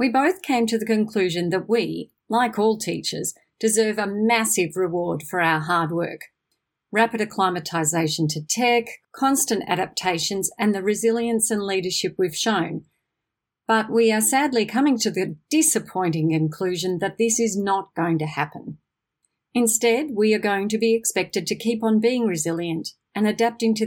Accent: Australian